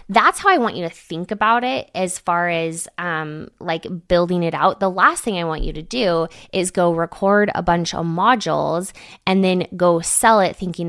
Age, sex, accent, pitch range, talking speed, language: 20-39, female, American, 165-210 Hz, 210 wpm, English